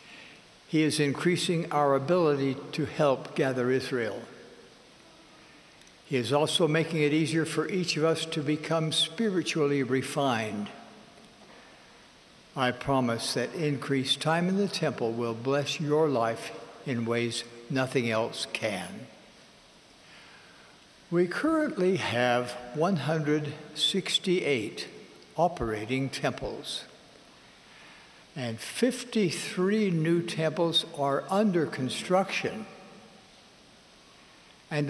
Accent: American